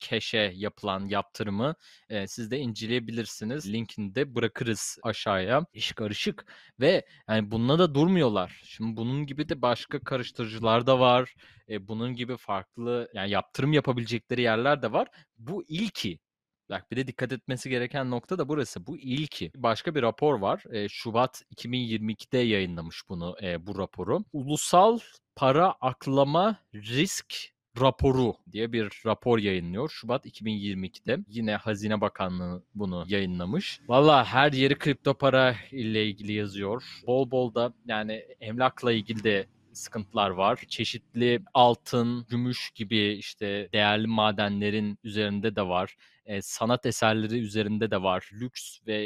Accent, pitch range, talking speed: native, 105-125 Hz, 135 wpm